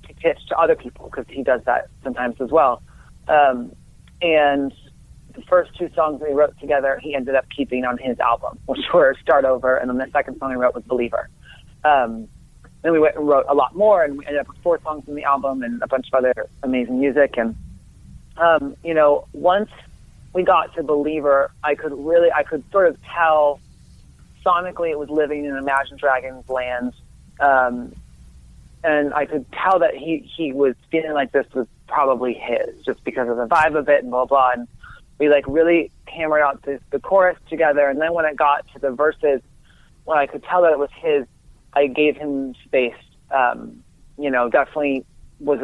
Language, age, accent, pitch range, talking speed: English, 30-49, American, 130-155 Hz, 200 wpm